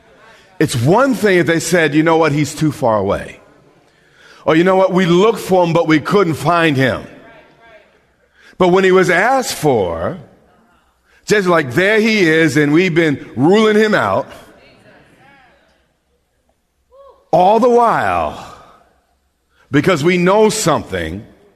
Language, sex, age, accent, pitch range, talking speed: English, male, 50-69, American, 145-205 Hz, 140 wpm